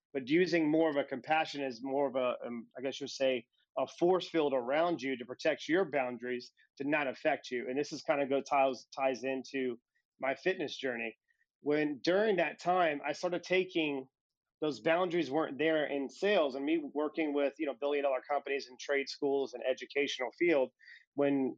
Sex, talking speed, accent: male, 190 wpm, American